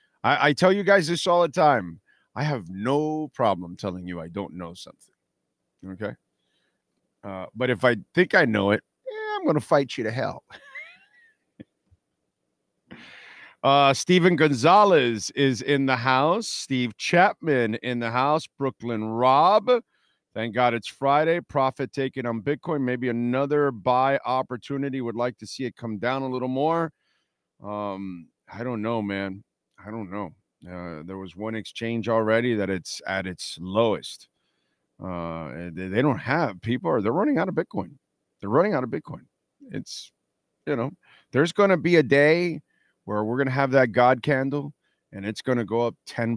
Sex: male